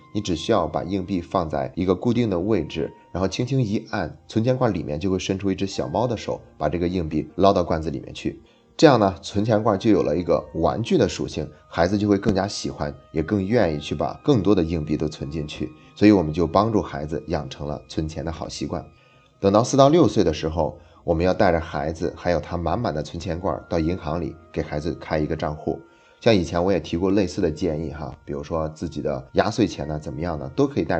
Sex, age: male, 30-49